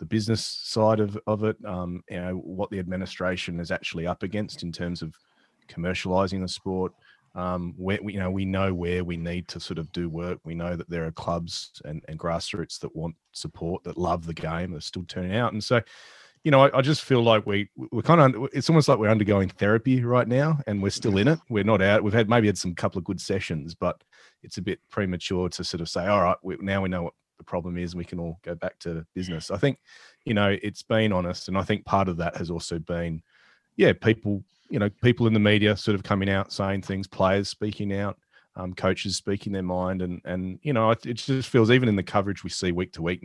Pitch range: 85-105 Hz